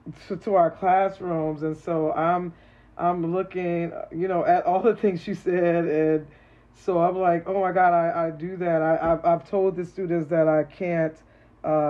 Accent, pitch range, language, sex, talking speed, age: American, 150-165 Hz, English, male, 190 wpm, 40-59